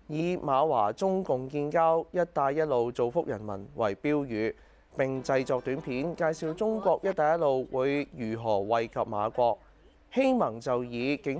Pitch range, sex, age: 120-160 Hz, male, 20-39